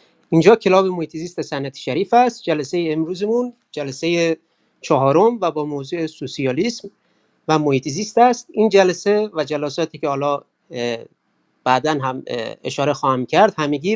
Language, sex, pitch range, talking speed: Persian, male, 145-185 Hz, 125 wpm